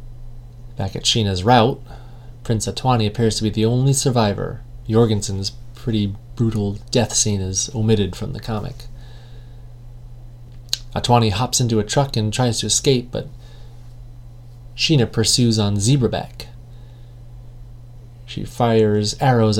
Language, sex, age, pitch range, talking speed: English, male, 30-49, 110-120 Hz, 120 wpm